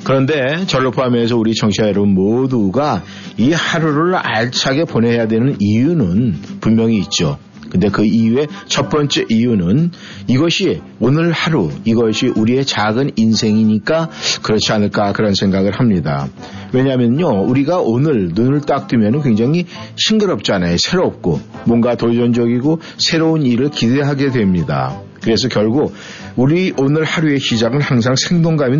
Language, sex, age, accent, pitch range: Korean, male, 50-69, native, 110-150 Hz